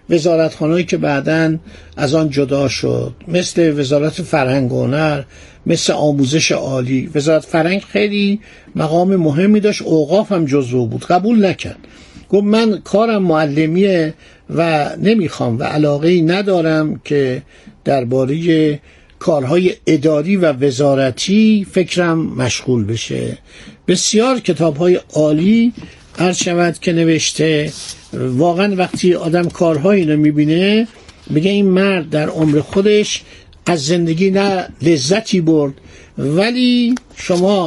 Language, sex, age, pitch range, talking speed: Persian, male, 60-79, 145-190 Hz, 110 wpm